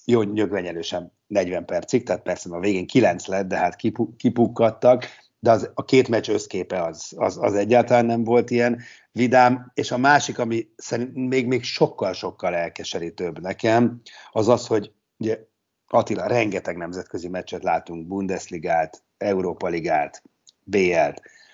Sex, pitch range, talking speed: male, 95-125 Hz, 135 wpm